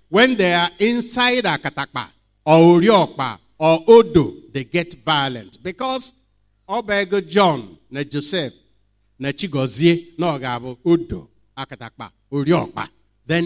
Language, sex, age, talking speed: English, male, 50-69, 105 wpm